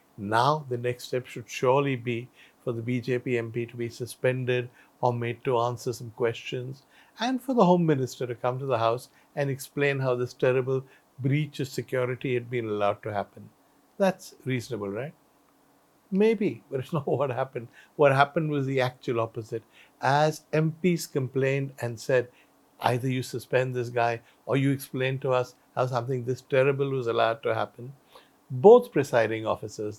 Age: 60-79